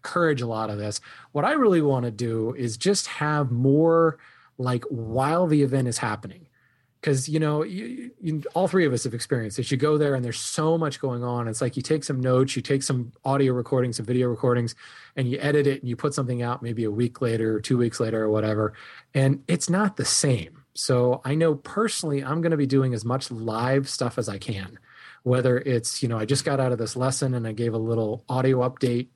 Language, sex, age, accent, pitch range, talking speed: English, male, 20-39, American, 115-145 Hz, 230 wpm